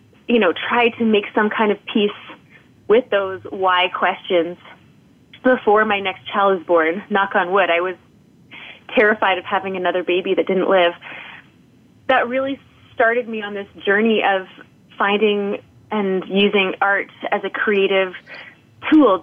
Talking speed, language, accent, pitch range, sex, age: 150 wpm, English, American, 195-235 Hz, female, 20-39